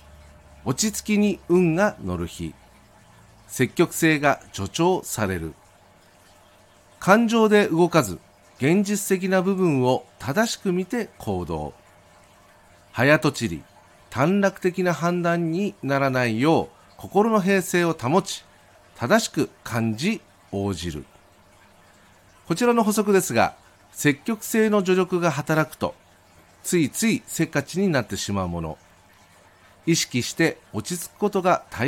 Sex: male